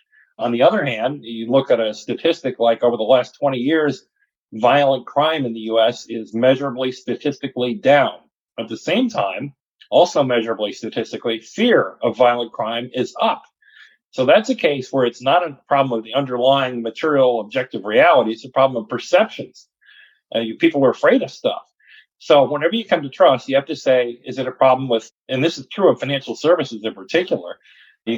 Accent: American